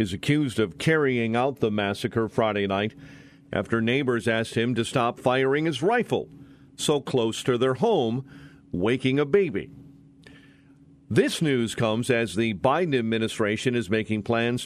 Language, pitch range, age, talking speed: English, 115-140 Hz, 50-69, 145 wpm